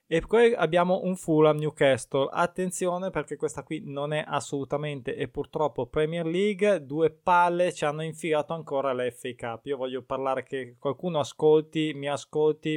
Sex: male